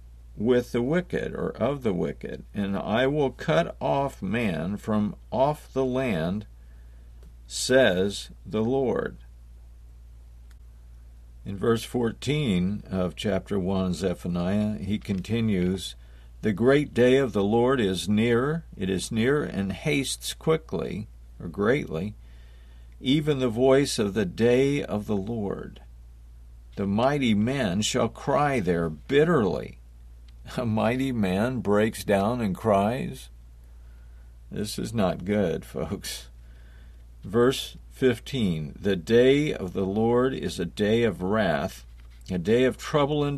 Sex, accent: male, American